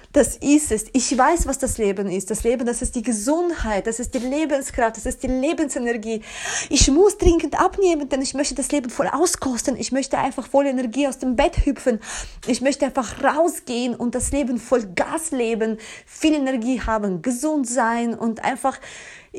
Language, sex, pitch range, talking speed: German, female, 220-275 Hz, 185 wpm